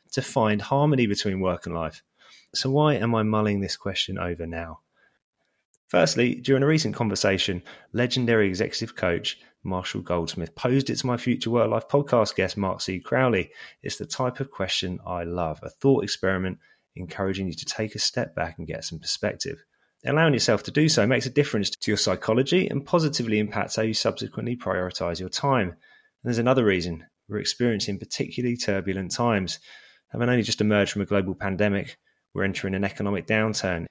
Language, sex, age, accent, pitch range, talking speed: English, male, 20-39, British, 90-120 Hz, 180 wpm